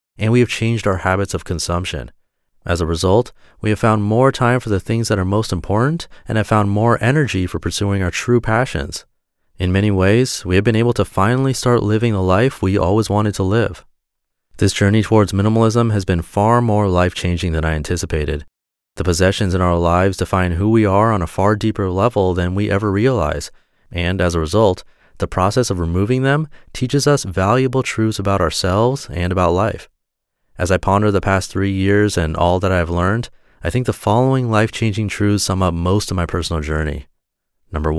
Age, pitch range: 30-49, 90-110 Hz